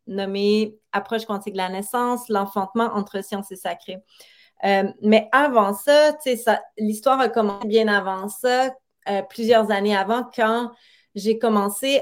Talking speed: 140 wpm